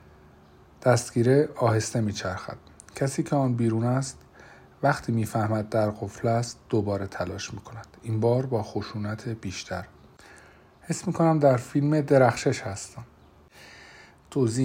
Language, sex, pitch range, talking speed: Persian, male, 105-120 Hz, 115 wpm